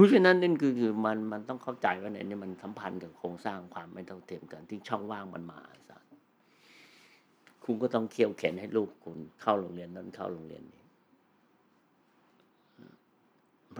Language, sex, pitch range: Thai, male, 95-115 Hz